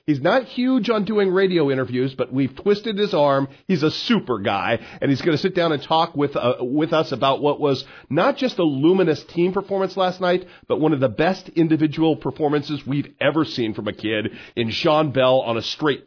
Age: 40-59